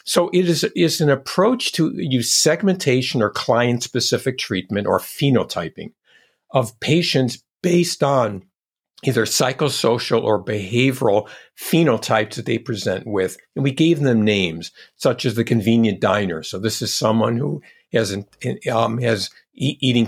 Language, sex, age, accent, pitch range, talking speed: English, male, 50-69, American, 105-130 Hz, 145 wpm